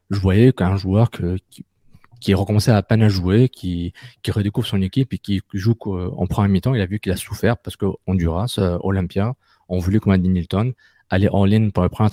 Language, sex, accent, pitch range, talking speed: French, male, French, 95-115 Hz, 225 wpm